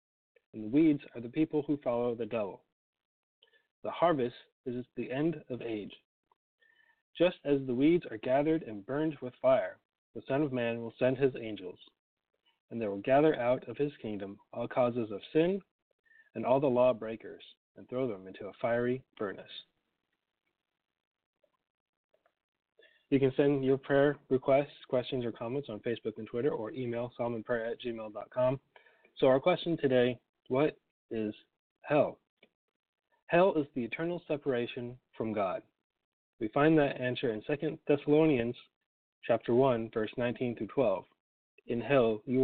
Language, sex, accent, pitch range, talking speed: English, male, American, 120-150 Hz, 145 wpm